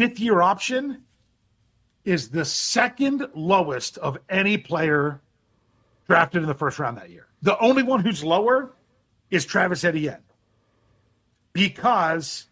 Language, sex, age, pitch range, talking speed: English, male, 40-59, 130-205 Hz, 120 wpm